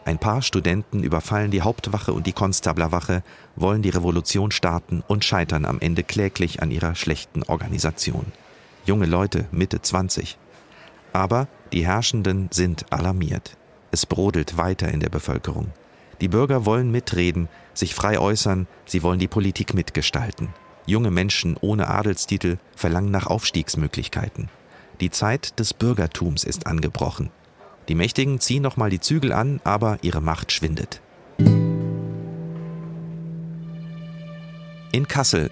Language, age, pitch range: German, 40-59, 85-110 Hz